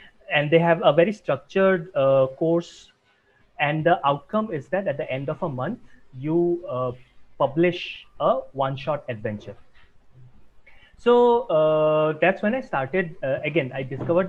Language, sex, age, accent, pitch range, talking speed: English, male, 30-49, Indian, 135-185 Hz, 150 wpm